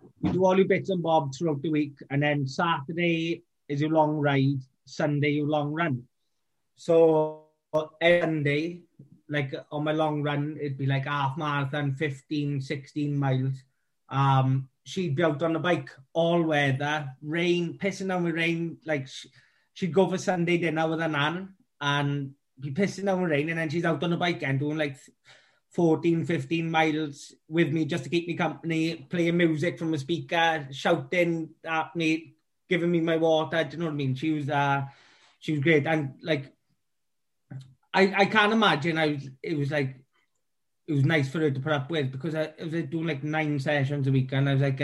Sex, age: male, 20-39